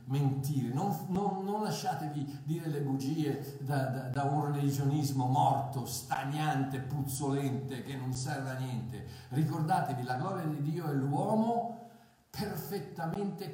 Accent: native